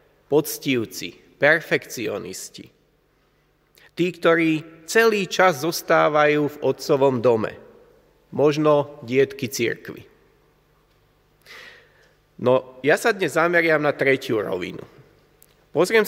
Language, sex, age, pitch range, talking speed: Slovak, male, 30-49, 135-180 Hz, 80 wpm